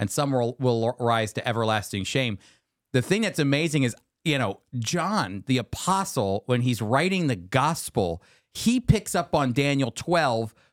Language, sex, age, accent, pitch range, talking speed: English, male, 40-59, American, 130-175 Hz, 155 wpm